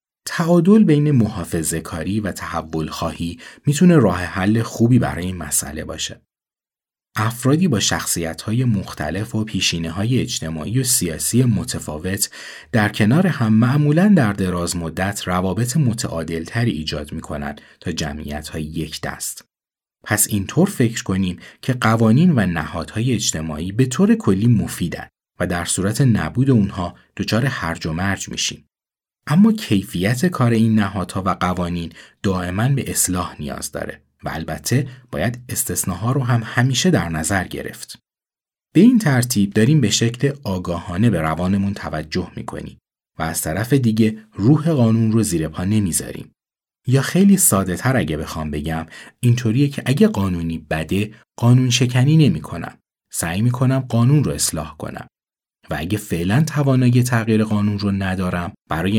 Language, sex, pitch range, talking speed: Persian, male, 85-125 Hz, 140 wpm